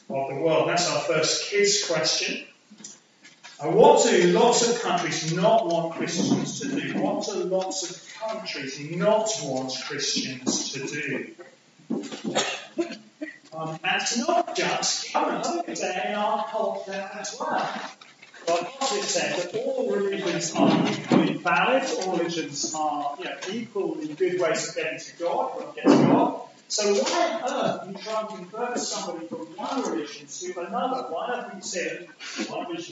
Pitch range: 165-245 Hz